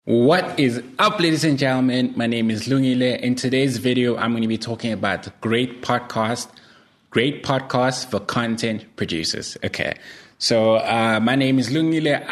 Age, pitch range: 20-39, 110-130 Hz